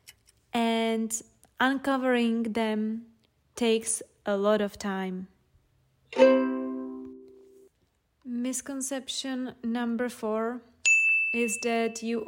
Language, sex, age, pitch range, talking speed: English, female, 20-39, 210-245 Hz, 70 wpm